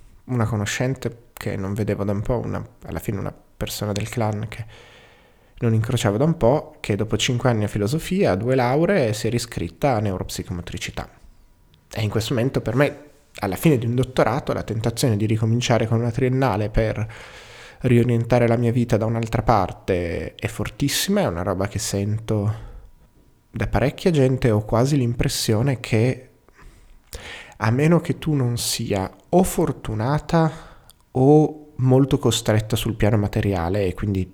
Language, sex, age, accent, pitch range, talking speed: Italian, male, 20-39, native, 105-130 Hz, 160 wpm